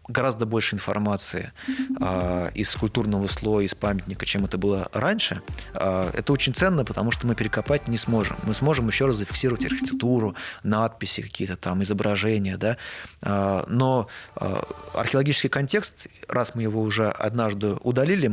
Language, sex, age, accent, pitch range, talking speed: Russian, male, 30-49, native, 100-120 Hz, 145 wpm